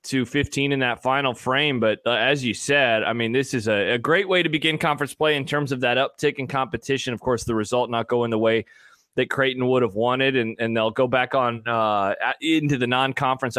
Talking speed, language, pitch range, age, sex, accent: 235 wpm, English, 120-145 Hz, 20-39, male, American